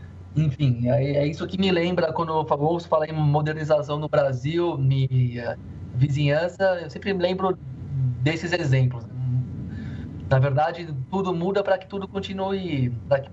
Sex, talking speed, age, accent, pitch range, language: male, 135 wpm, 20-39, Brazilian, 125-155 Hz, Portuguese